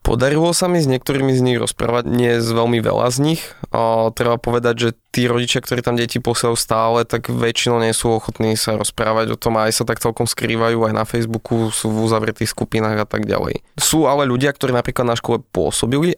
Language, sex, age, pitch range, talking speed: Slovak, male, 20-39, 110-120 Hz, 215 wpm